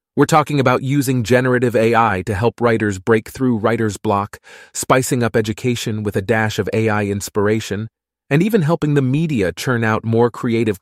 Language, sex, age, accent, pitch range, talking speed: English, male, 30-49, American, 100-120 Hz, 170 wpm